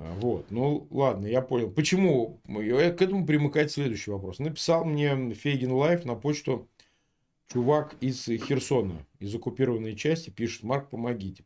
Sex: male